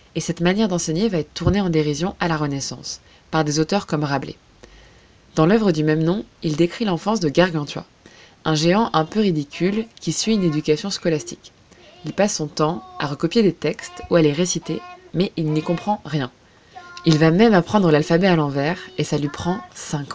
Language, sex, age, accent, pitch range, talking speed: French, female, 20-39, French, 155-210 Hz, 195 wpm